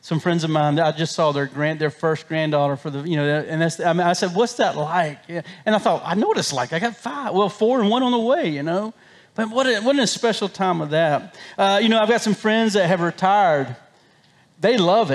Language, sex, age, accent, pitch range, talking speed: English, male, 40-59, American, 185-265 Hz, 265 wpm